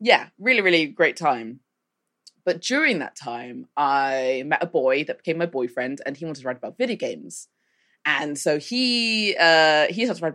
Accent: British